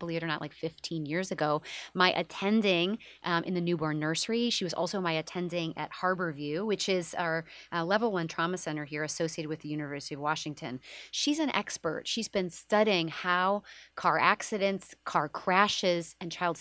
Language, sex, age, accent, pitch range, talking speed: English, female, 30-49, American, 155-200 Hz, 180 wpm